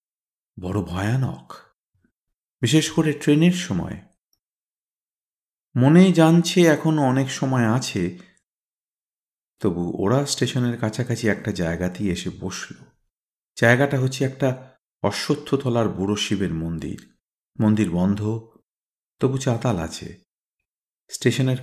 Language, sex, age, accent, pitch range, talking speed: Bengali, male, 50-69, native, 95-135 Hz, 90 wpm